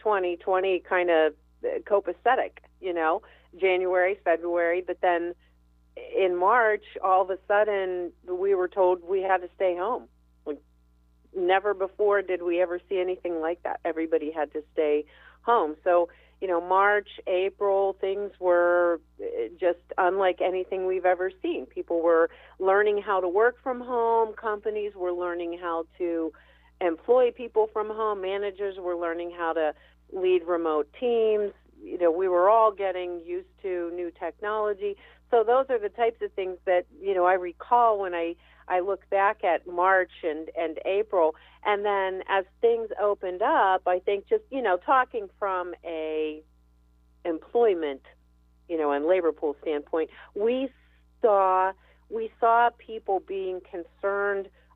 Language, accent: English, American